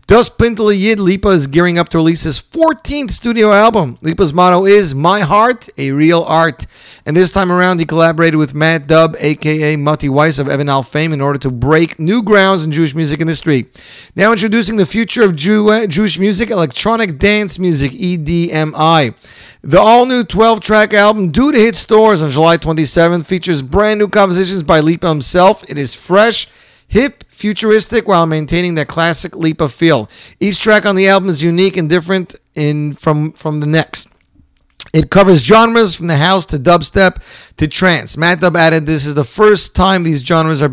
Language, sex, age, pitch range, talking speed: English, male, 40-59, 155-200 Hz, 180 wpm